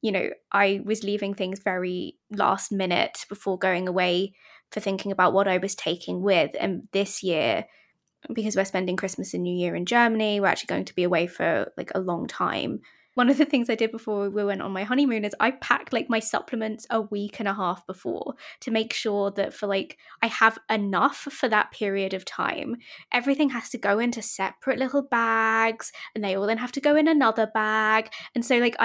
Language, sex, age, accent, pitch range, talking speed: English, female, 20-39, British, 195-225 Hz, 210 wpm